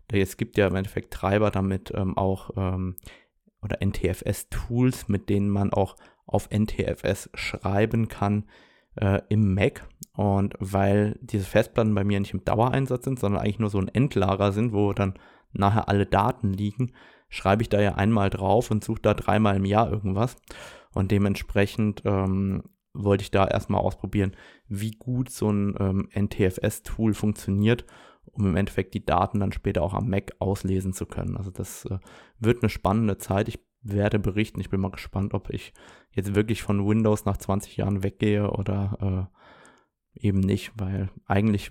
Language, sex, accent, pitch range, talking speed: German, male, German, 100-110 Hz, 170 wpm